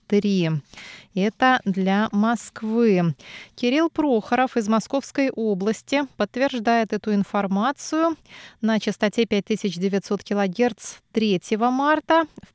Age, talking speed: 20-39, 90 wpm